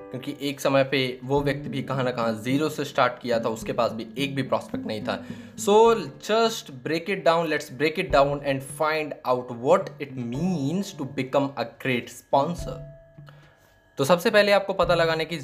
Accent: native